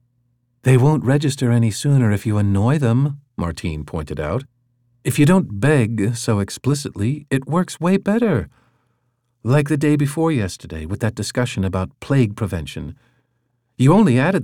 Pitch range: 100-125 Hz